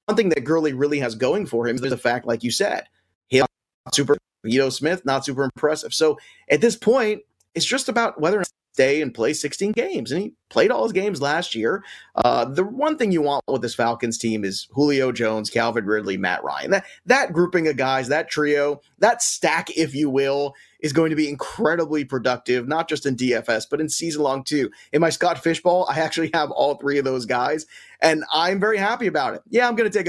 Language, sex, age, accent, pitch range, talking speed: English, male, 30-49, American, 125-165 Hz, 225 wpm